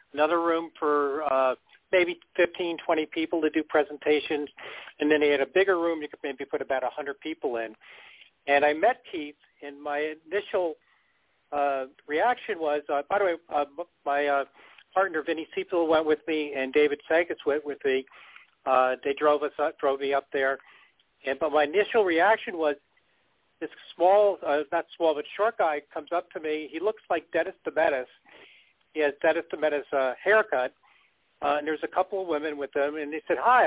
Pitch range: 145-180 Hz